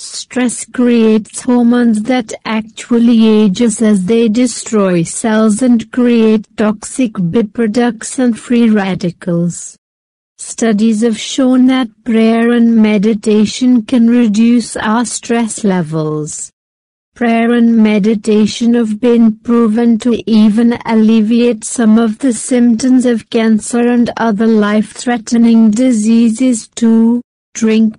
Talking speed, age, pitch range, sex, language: 110 wpm, 60-79, 220-240 Hz, female, Hindi